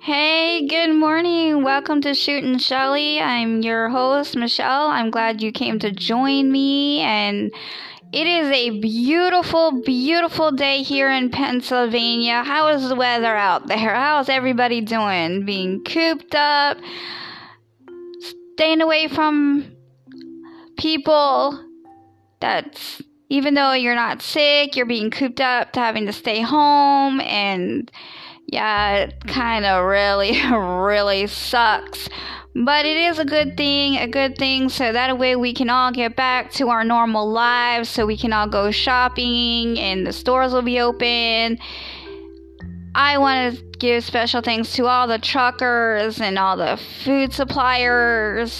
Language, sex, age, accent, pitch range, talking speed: English, female, 10-29, American, 220-285 Hz, 145 wpm